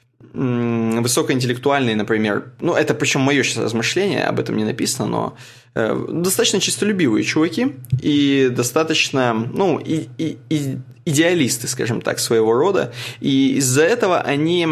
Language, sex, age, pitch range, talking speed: Russian, male, 20-39, 115-140 Hz, 130 wpm